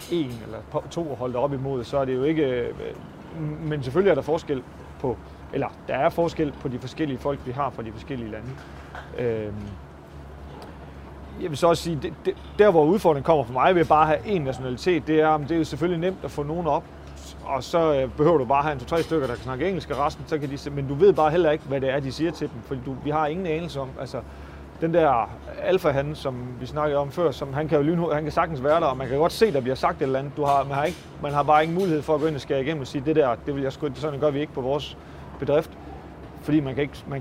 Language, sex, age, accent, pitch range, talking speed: Danish, male, 30-49, native, 120-155 Hz, 265 wpm